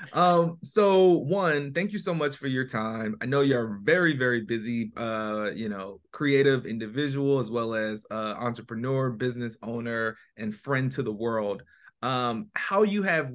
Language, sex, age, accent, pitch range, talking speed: English, male, 30-49, American, 115-140 Hz, 165 wpm